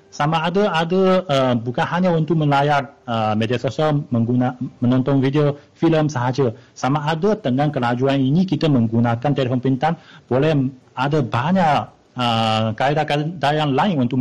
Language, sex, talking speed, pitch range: Malay, male, 135 wpm, 115-145 Hz